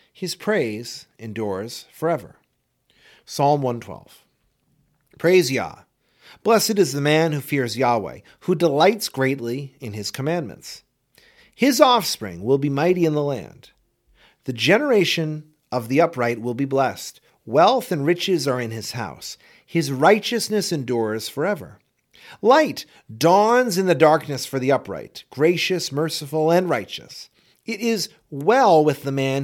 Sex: male